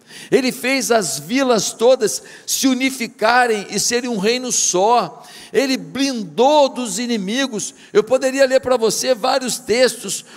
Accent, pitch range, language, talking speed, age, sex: Brazilian, 205-270 Hz, Portuguese, 135 wpm, 60-79, male